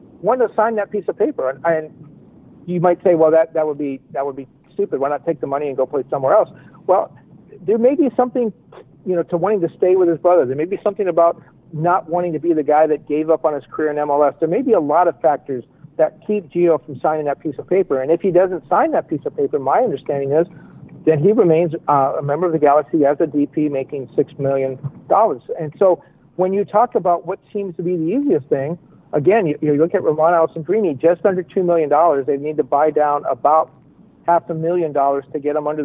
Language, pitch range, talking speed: English, 145-180 Hz, 245 wpm